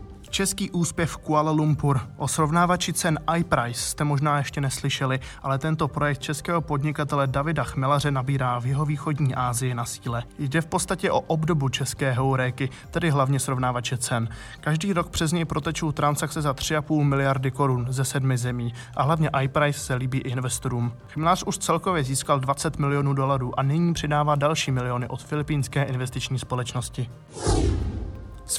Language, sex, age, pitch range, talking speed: Czech, male, 20-39, 130-155 Hz, 150 wpm